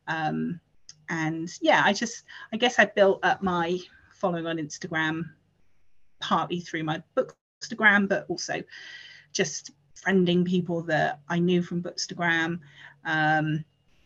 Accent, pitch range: British, 155-185 Hz